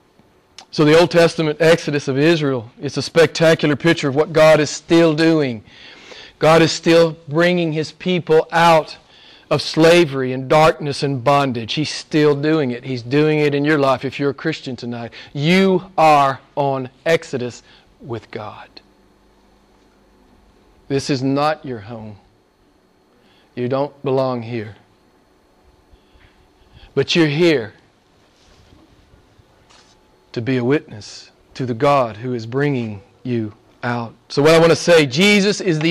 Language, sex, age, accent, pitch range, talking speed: English, male, 40-59, American, 130-165 Hz, 140 wpm